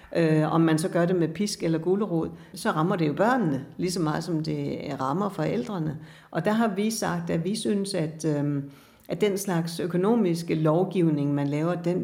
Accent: native